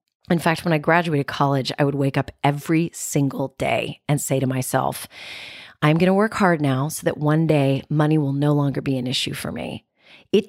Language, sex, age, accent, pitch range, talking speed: English, female, 30-49, American, 140-180 Hz, 210 wpm